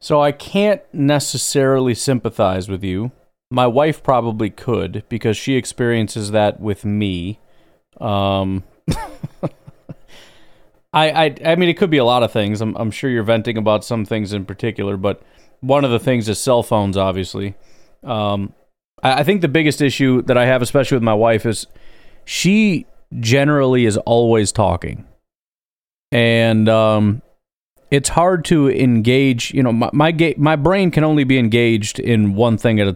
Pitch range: 110-140 Hz